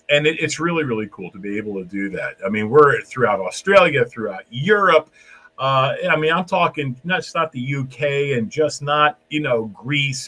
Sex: male